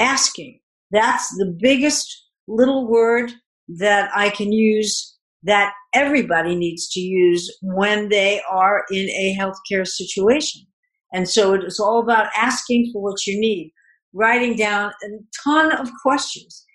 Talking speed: 140 wpm